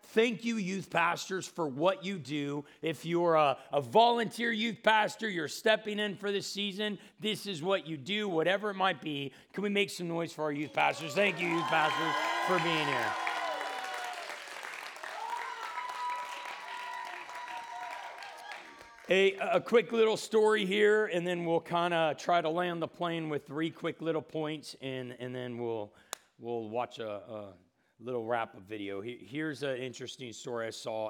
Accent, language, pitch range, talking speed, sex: American, English, 145-205 Hz, 165 wpm, male